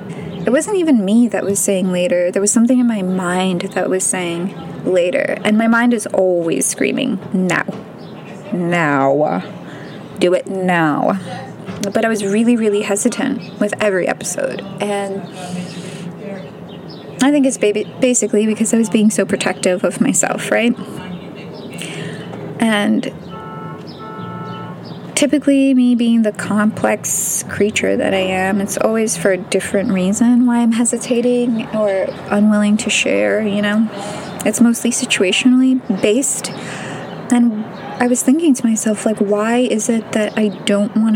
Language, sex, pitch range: English, female, 195-235 Hz